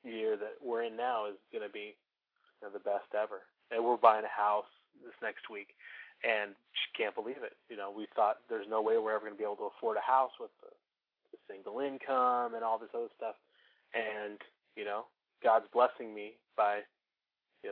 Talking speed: 205 wpm